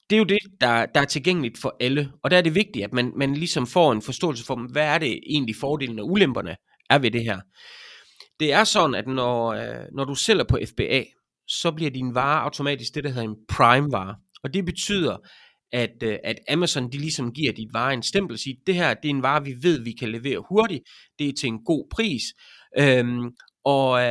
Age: 30-49